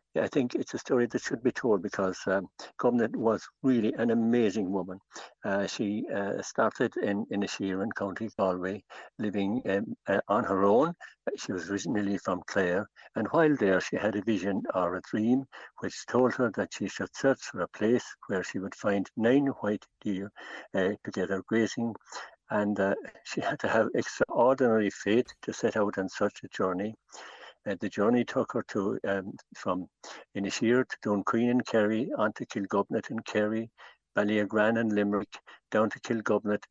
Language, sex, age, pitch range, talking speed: English, male, 60-79, 100-115 Hz, 175 wpm